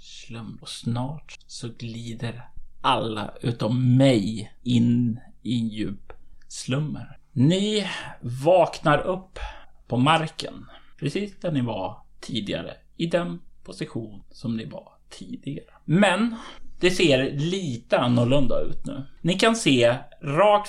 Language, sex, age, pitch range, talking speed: Swedish, male, 30-49, 120-160 Hz, 115 wpm